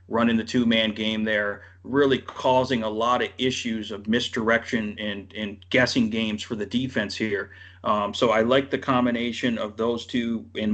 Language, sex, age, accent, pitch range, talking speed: English, male, 40-59, American, 110-125 Hz, 175 wpm